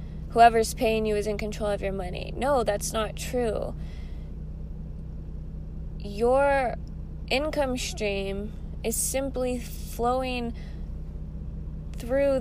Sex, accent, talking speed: female, American, 95 wpm